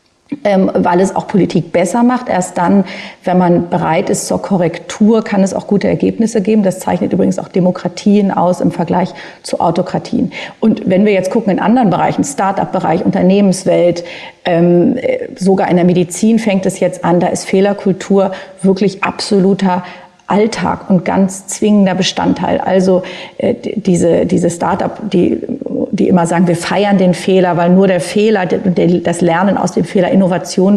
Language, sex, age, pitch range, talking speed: German, female, 40-59, 175-205 Hz, 160 wpm